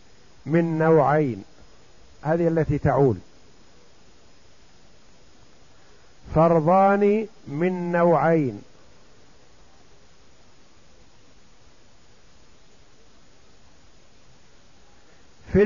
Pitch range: 145-195 Hz